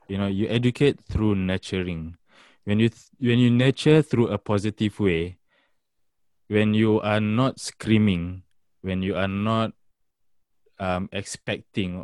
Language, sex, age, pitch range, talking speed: Malay, male, 20-39, 90-115 Hz, 135 wpm